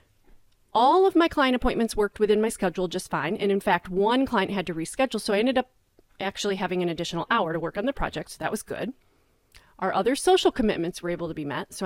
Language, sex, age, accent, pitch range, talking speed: English, female, 30-49, American, 175-225 Hz, 240 wpm